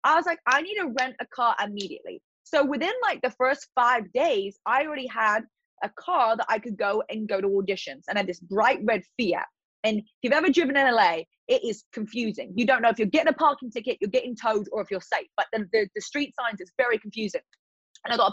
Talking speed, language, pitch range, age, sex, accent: 245 wpm, English, 220-300 Hz, 20-39, female, British